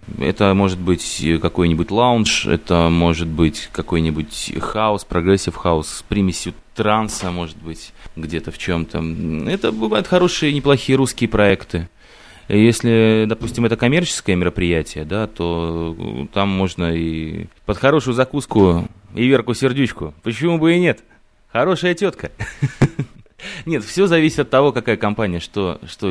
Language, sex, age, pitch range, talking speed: Russian, male, 20-39, 85-110 Hz, 130 wpm